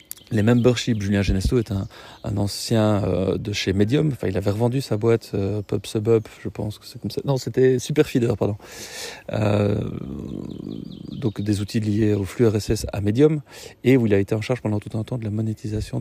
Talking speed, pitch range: 200 wpm, 105-120 Hz